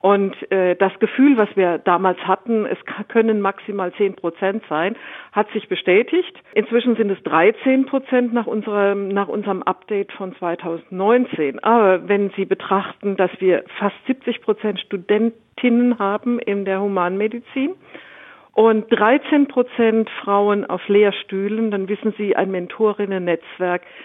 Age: 50-69